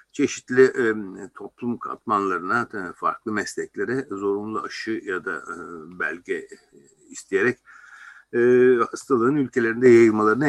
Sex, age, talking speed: male, 60-79, 95 wpm